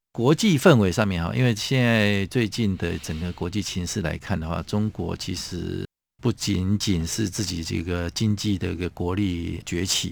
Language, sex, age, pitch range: Chinese, male, 50-69, 90-110 Hz